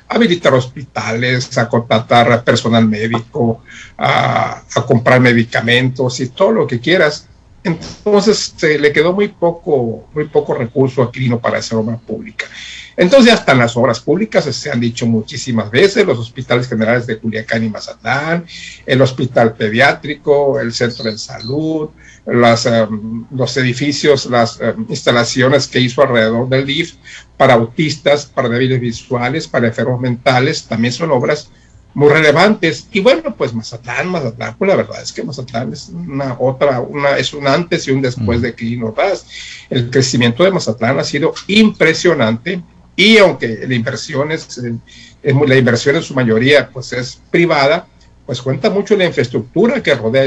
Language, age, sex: Spanish, 50-69, male